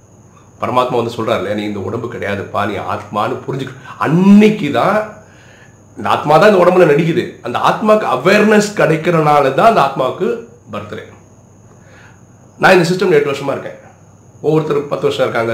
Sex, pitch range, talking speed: male, 110-165 Hz, 135 wpm